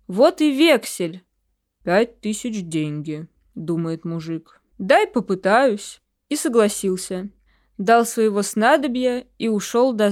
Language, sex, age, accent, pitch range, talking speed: Russian, female, 20-39, native, 190-250 Hz, 105 wpm